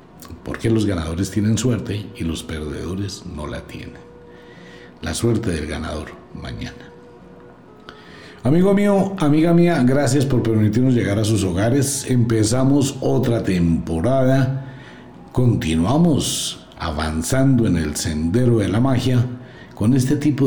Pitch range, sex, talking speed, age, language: 90-130 Hz, male, 120 wpm, 60-79, Spanish